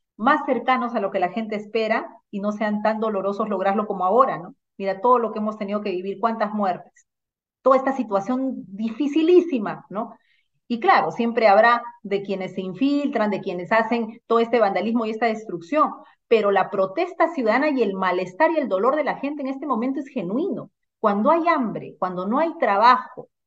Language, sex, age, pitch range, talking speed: Spanish, female, 40-59, 200-255 Hz, 190 wpm